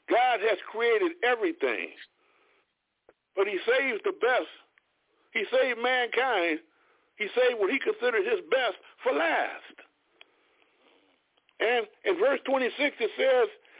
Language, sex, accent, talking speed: English, male, American, 115 wpm